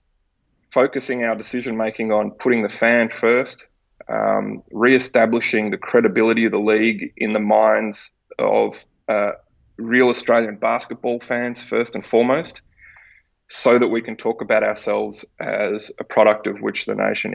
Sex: male